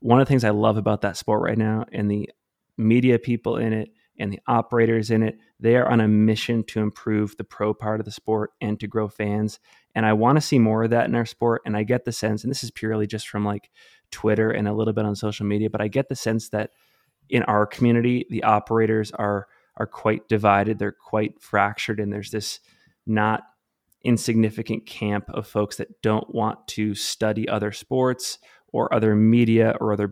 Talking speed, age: 215 wpm, 20-39